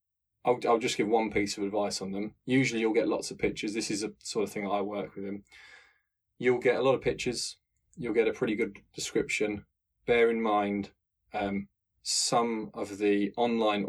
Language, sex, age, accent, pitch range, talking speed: English, male, 20-39, British, 95-110 Hz, 200 wpm